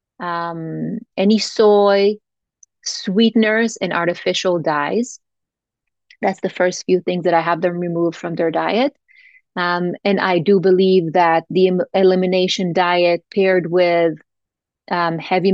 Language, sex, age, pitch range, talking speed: English, female, 30-49, 170-195 Hz, 130 wpm